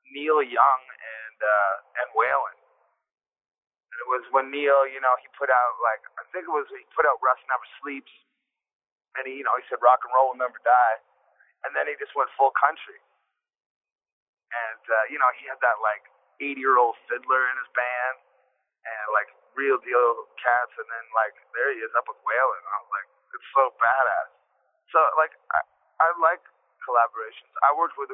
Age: 30-49